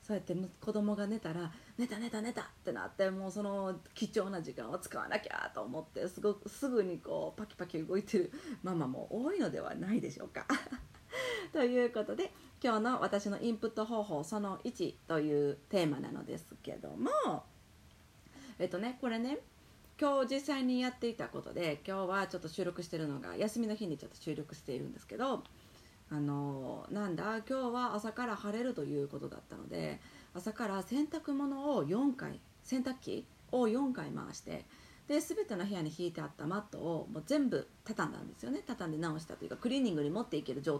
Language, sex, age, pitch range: Japanese, female, 30-49, 175-245 Hz